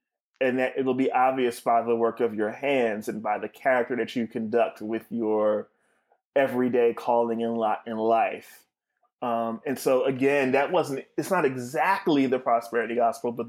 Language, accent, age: English, American, 20-39